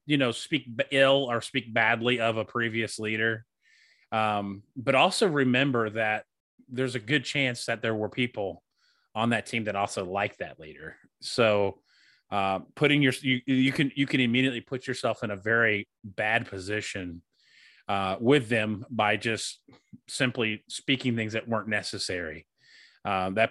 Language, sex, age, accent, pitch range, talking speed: English, male, 30-49, American, 110-140 Hz, 160 wpm